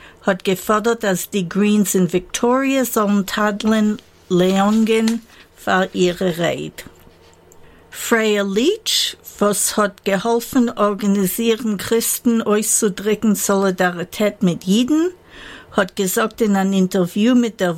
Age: 60-79